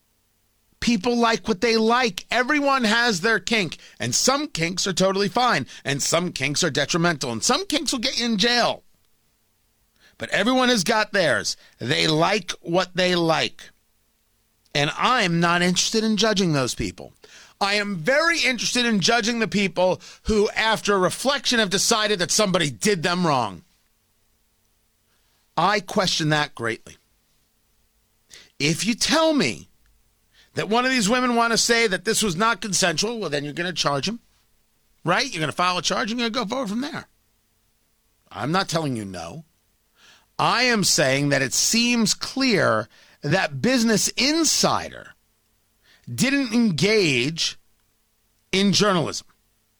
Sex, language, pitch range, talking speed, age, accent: male, English, 150-235 Hz, 155 wpm, 40-59, American